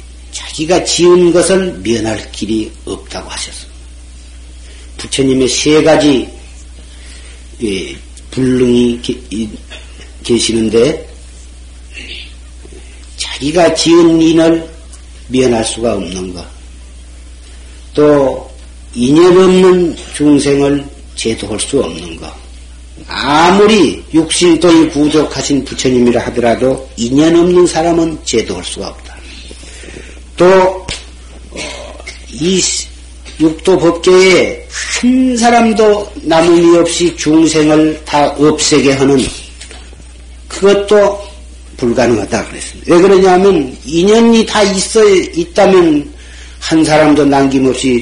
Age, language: 40-59, Korean